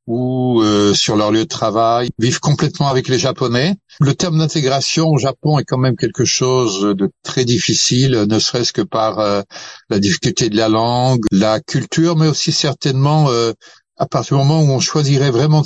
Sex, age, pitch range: male, 60-79, 110-140 Hz